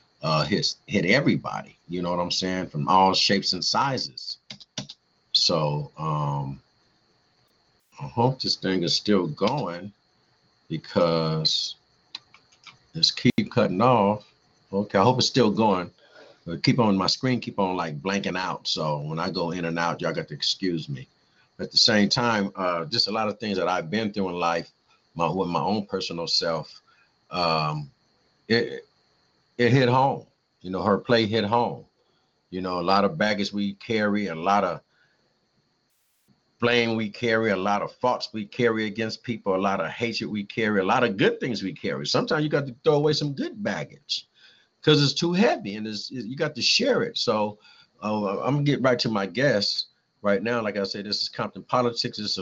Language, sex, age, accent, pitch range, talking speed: English, male, 50-69, American, 90-120 Hz, 185 wpm